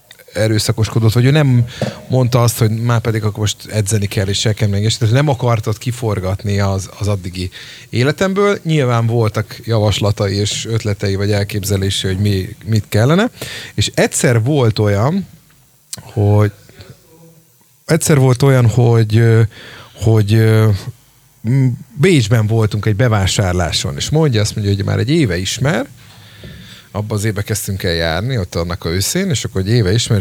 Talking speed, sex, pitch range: 145 wpm, male, 95-125 Hz